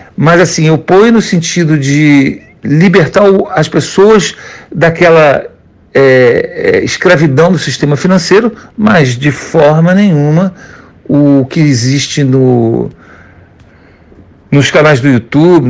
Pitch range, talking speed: 145-200 Hz, 110 wpm